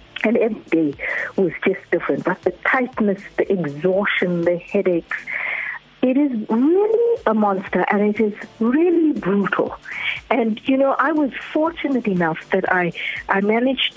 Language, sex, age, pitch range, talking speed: English, female, 60-79, 190-245 Hz, 145 wpm